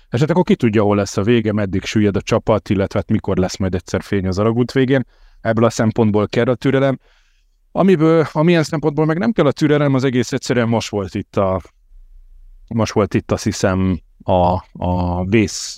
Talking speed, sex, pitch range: 195 wpm, male, 95-120 Hz